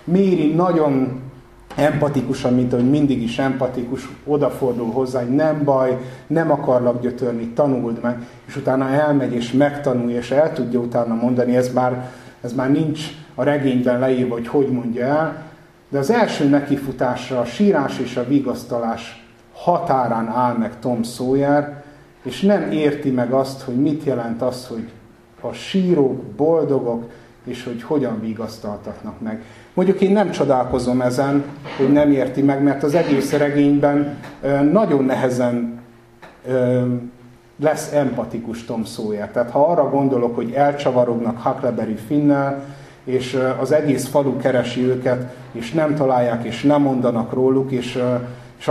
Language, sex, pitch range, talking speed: Hungarian, male, 120-145 Hz, 140 wpm